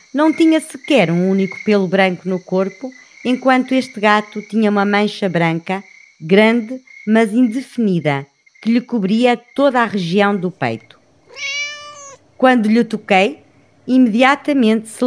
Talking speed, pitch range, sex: 125 wpm, 195-265 Hz, female